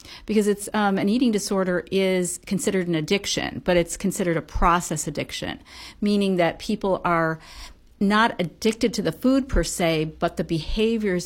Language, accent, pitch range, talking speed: English, American, 165-190 Hz, 160 wpm